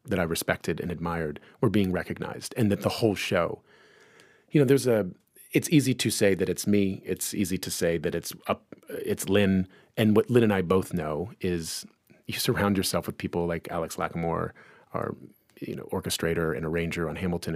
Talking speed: 195 wpm